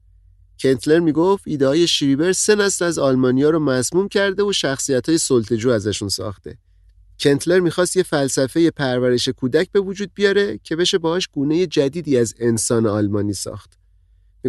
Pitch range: 110-165 Hz